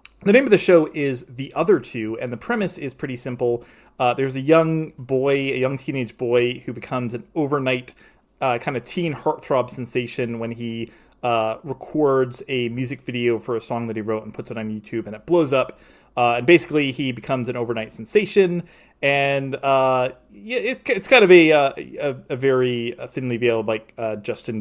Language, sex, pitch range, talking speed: English, male, 115-145 Hz, 190 wpm